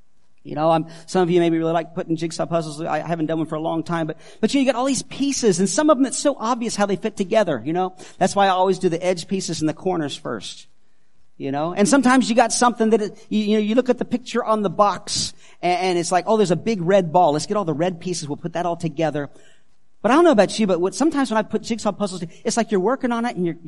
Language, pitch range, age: English, 165-235 Hz, 40-59